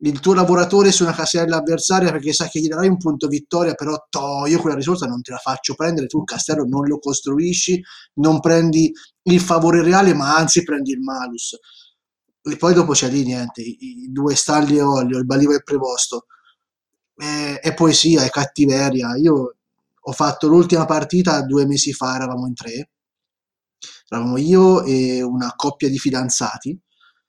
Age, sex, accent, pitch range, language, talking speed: 20-39, male, native, 140-175 Hz, Italian, 180 wpm